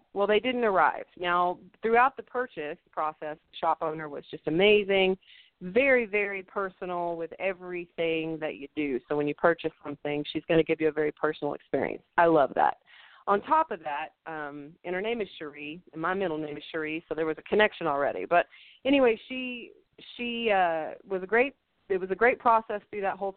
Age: 40-59